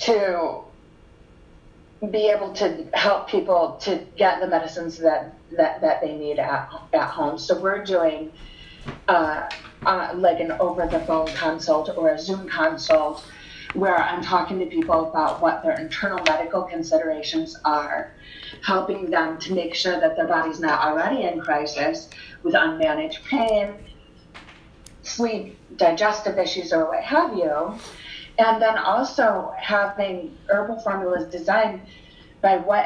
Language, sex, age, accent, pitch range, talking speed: English, female, 30-49, American, 160-210 Hz, 140 wpm